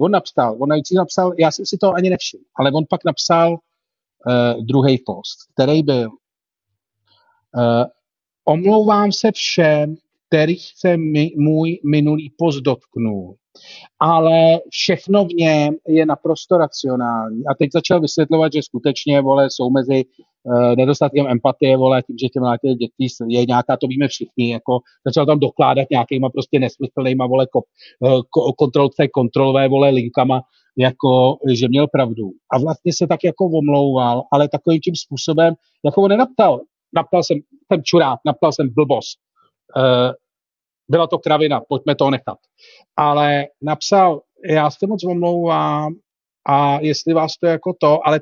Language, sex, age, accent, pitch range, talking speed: Czech, male, 40-59, native, 130-170 Hz, 140 wpm